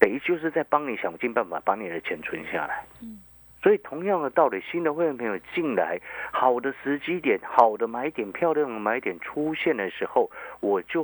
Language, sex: Chinese, male